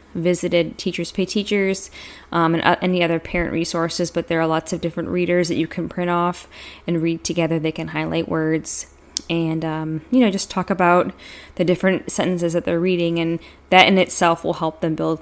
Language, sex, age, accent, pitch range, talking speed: English, female, 10-29, American, 165-185 Hz, 200 wpm